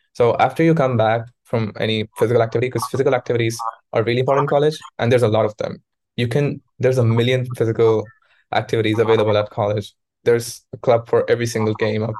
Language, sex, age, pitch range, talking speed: English, male, 20-39, 115-130 Hz, 200 wpm